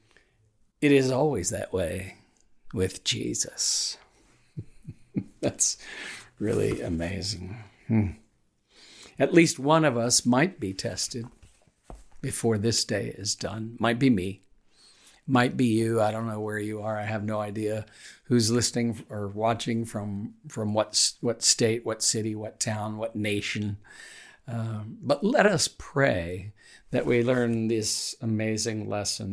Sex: male